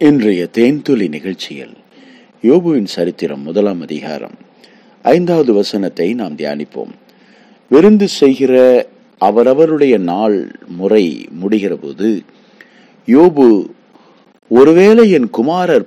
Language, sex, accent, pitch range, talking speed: Tamil, male, native, 105-160 Hz, 70 wpm